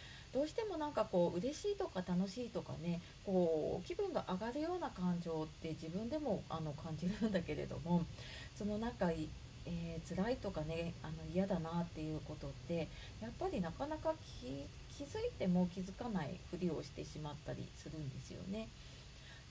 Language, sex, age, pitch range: Japanese, female, 30-49, 160-230 Hz